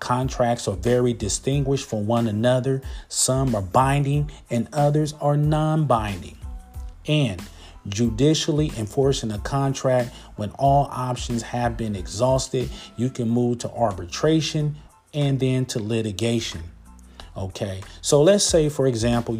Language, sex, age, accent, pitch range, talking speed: English, male, 40-59, American, 105-130 Hz, 125 wpm